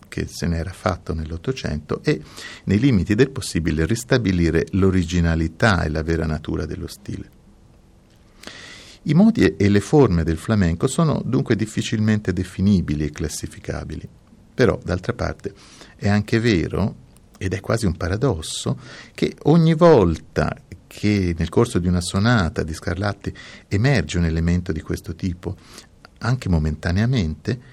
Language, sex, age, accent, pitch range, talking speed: Italian, male, 50-69, native, 80-115 Hz, 130 wpm